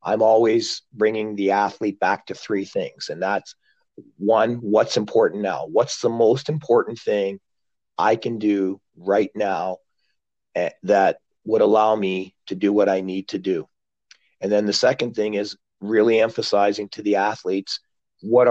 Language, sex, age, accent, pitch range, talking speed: English, male, 40-59, American, 100-130 Hz, 155 wpm